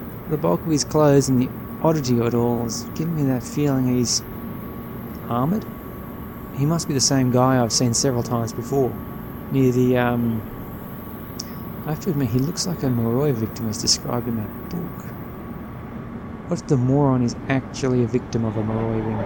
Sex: male